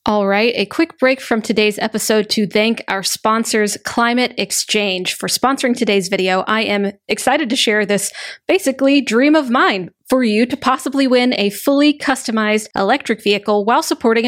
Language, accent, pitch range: English, American, 210-265 Hz